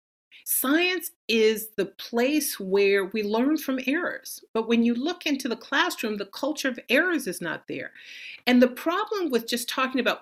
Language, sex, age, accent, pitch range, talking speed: English, female, 50-69, American, 215-280 Hz, 175 wpm